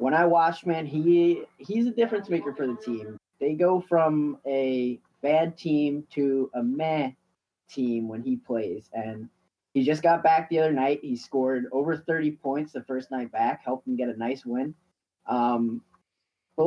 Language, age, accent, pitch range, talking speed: English, 20-39, American, 120-160 Hz, 180 wpm